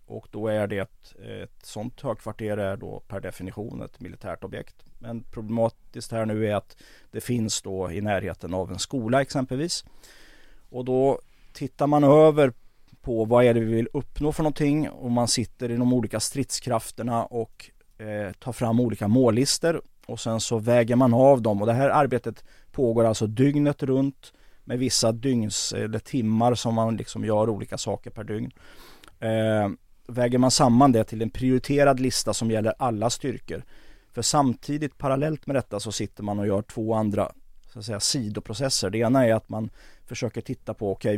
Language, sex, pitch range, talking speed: Swedish, male, 105-130 Hz, 180 wpm